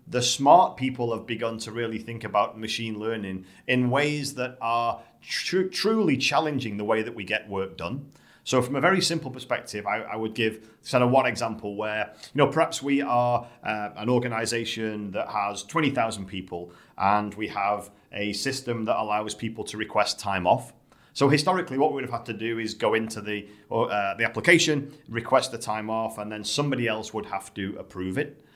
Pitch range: 105-130 Hz